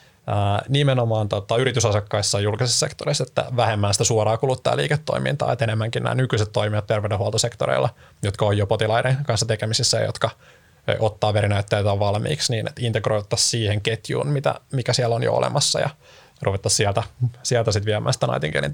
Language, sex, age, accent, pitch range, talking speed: Finnish, male, 20-39, native, 110-130 Hz, 150 wpm